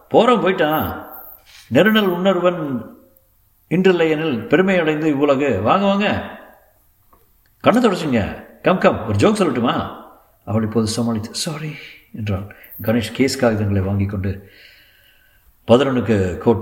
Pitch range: 105-160 Hz